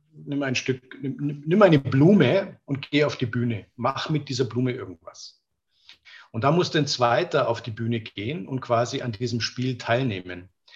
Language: German